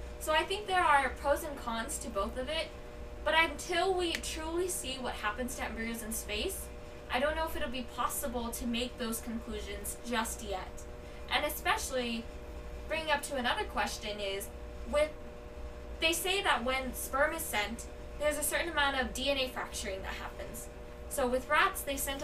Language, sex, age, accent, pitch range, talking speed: English, female, 10-29, American, 220-300 Hz, 180 wpm